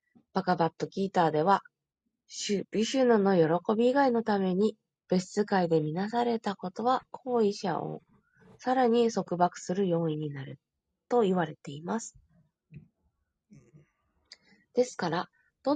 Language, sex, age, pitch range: Japanese, female, 20-39, 175-235 Hz